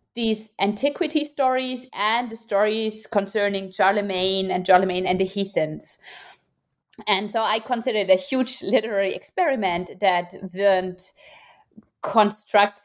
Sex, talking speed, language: female, 115 wpm, English